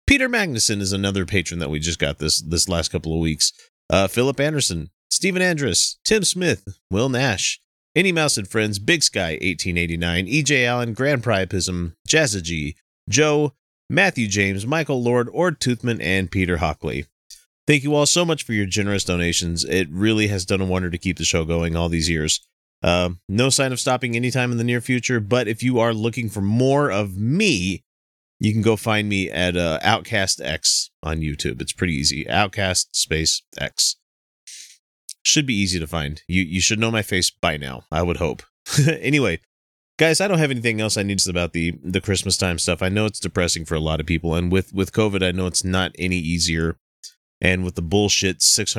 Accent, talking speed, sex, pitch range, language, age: American, 195 wpm, male, 85-115 Hz, English, 30-49